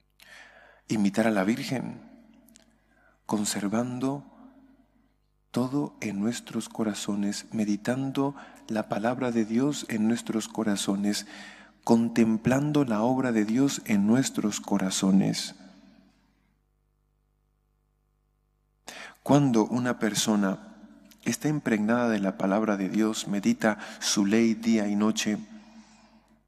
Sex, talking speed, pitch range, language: male, 95 wpm, 110-150 Hz, English